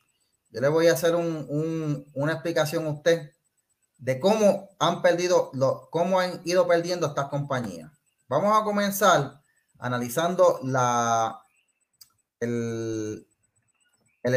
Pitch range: 135-185 Hz